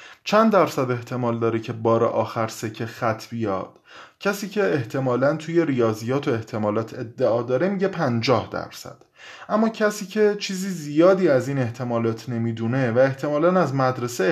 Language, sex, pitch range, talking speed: Persian, male, 120-170 Hz, 145 wpm